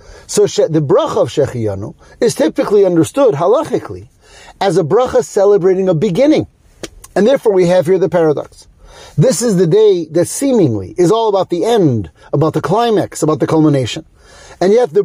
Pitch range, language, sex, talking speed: 145-200 Hz, English, male, 170 wpm